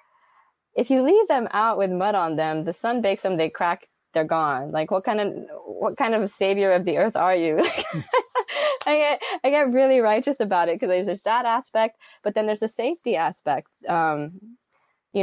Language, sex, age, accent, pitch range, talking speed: English, female, 20-39, American, 160-210 Hz, 205 wpm